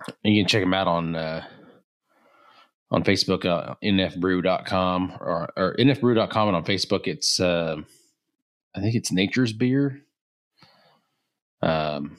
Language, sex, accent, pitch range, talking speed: English, male, American, 85-105 Hz, 130 wpm